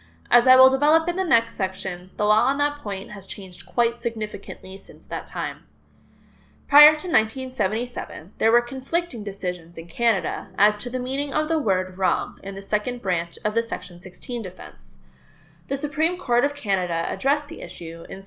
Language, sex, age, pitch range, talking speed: English, female, 10-29, 185-265 Hz, 180 wpm